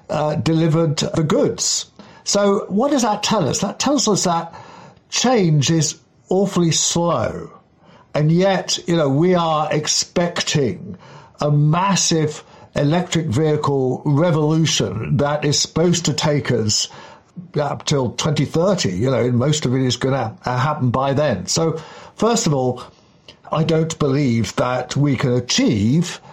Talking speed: 140 wpm